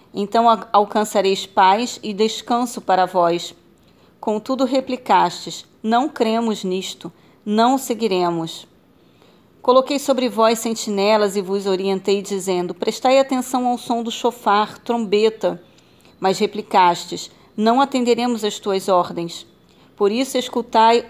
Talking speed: 110 wpm